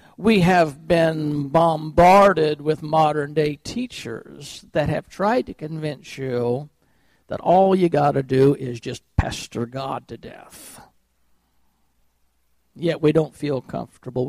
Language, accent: English, American